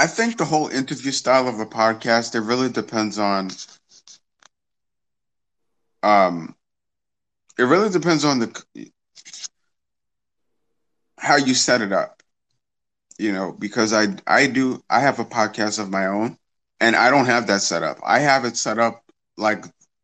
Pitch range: 100-120 Hz